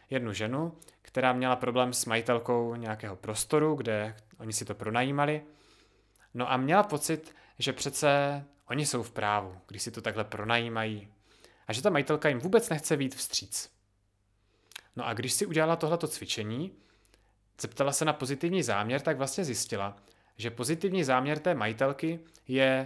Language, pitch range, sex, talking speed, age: Czech, 110-145 Hz, male, 155 wpm, 30-49